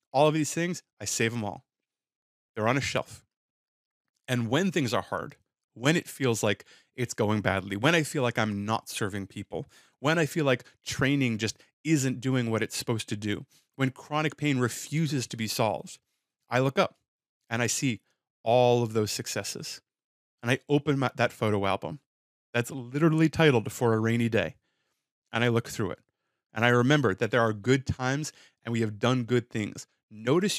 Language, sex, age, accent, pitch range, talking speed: English, male, 30-49, American, 115-155 Hz, 185 wpm